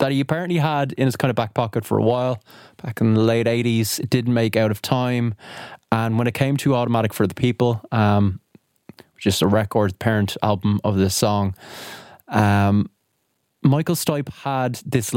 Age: 20-39